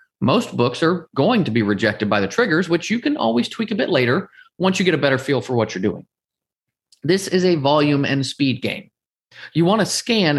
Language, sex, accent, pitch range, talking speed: English, male, American, 130-195 Hz, 225 wpm